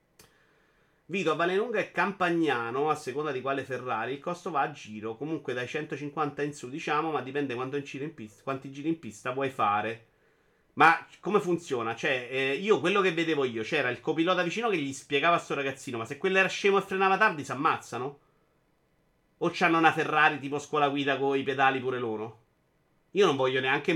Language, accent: Italian, native